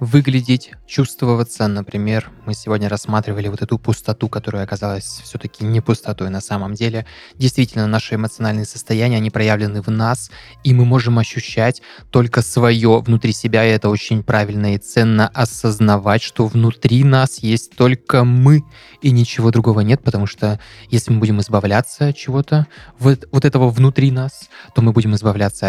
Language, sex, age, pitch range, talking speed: Russian, male, 20-39, 105-125 Hz, 155 wpm